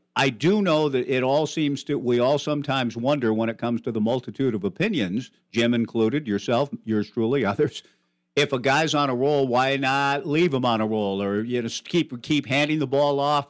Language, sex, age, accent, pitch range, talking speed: English, male, 50-69, American, 115-145 Hz, 215 wpm